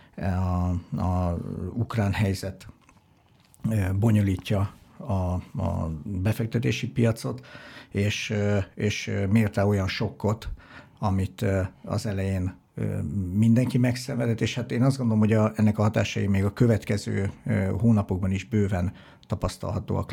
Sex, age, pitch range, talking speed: male, 50-69, 95-115 Hz, 110 wpm